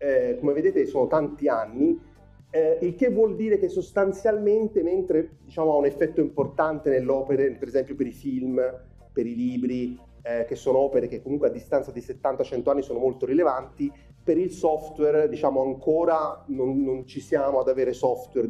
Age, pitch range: 30-49, 125-155 Hz